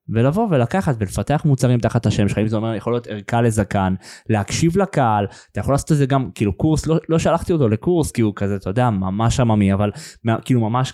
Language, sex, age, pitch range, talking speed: Hebrew, male, 20-39, 115-165 Hz, 215 wpm